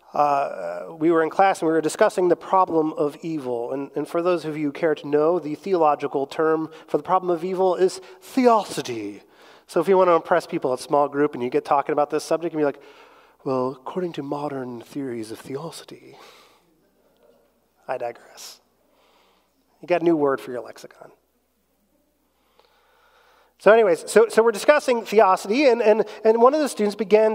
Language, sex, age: English, male, 30-49